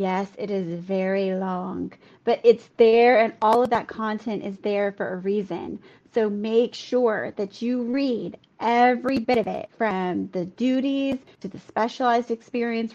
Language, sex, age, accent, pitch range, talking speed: English, female, 30-49, American, 200-250 Hz, 160 wpm